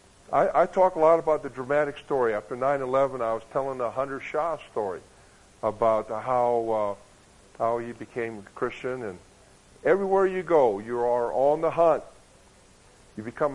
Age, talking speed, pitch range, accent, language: 50-69, 165 wpm, 110-145 Hz, American, English